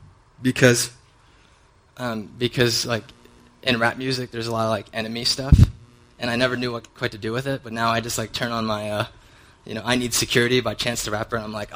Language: English